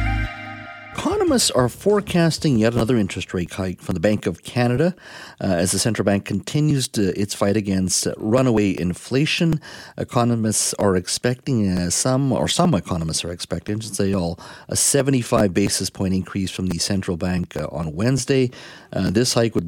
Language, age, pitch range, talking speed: English, 50-69, 95-120 Hz, 165 wpm